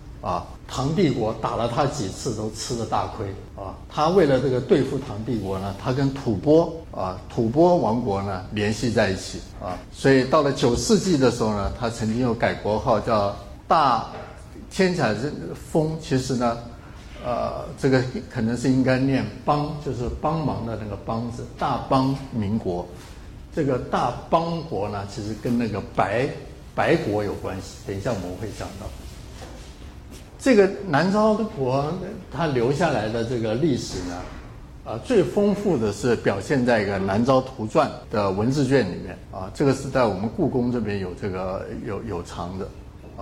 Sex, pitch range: male, 100-135 Hz